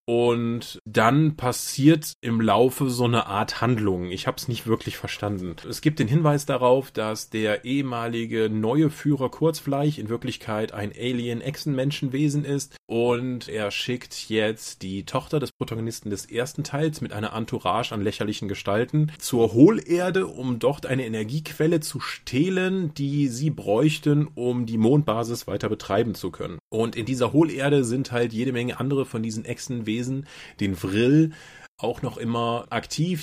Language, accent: German, German